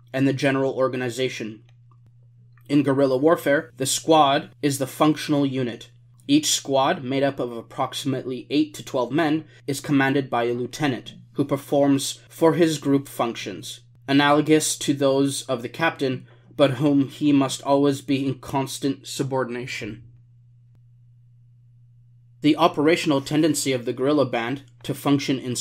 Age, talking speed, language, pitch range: 20-39, 140 wpm, English, 120-145 Hz